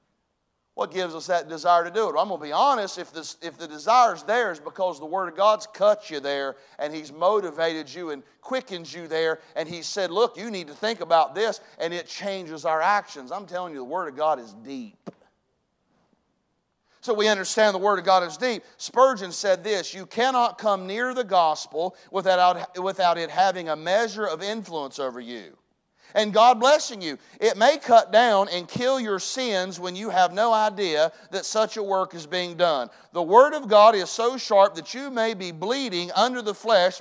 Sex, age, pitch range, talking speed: male, 40-59, 165-220 Hz, 210 wpm